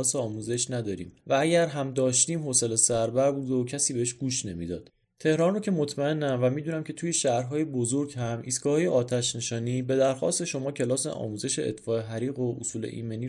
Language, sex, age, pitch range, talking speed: Persian, male, 30-49, 115-140 Hz, 170 wpm